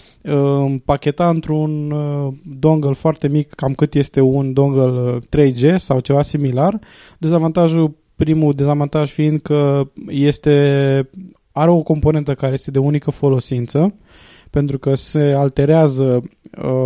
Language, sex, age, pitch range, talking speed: Romanian, male, 20-39, 135-175 Hz, 115 wpm